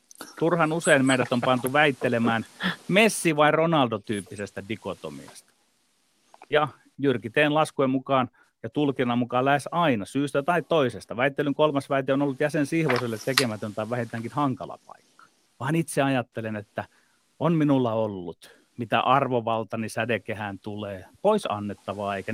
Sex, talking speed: male, 130 wpm